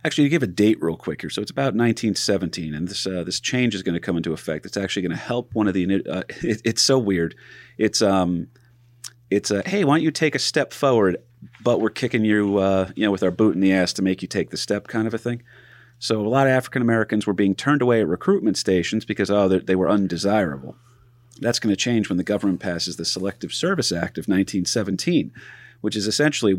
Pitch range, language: 95-120 Hz, English